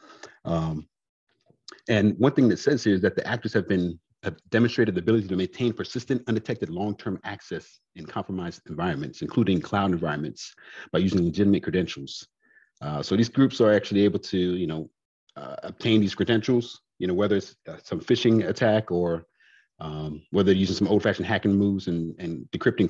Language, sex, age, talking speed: English, male, 40-59, 180 wpm